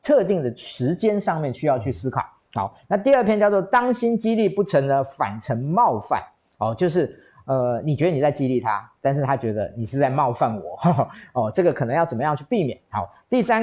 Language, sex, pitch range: Chinese, male, 120-165 Hz